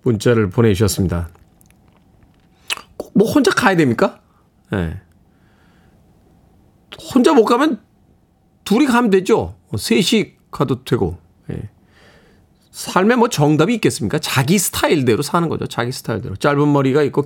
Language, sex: Korean, male